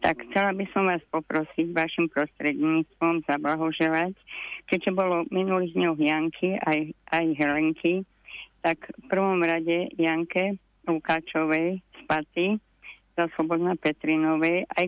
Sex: female